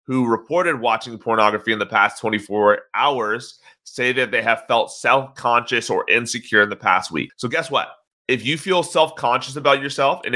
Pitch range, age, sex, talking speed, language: 110-140 Hz, 30-49, male, 180 wpm, English